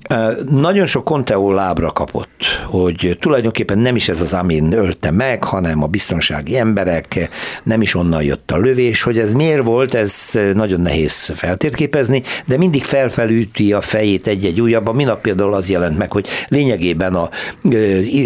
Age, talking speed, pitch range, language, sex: 60-79, 160 wpm, 85-110 Hz, Hungarian, male